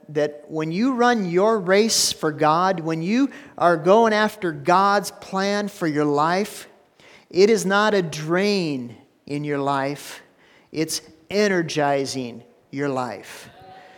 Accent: American